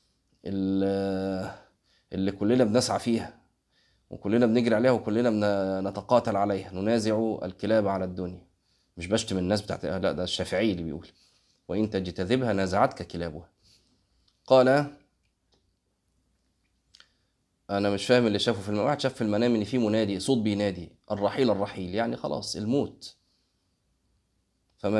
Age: 20-39